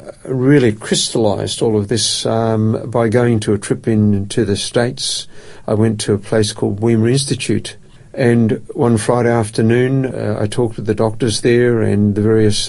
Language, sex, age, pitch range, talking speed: English, male, 50-69, 105-120 Hz, 170 wpm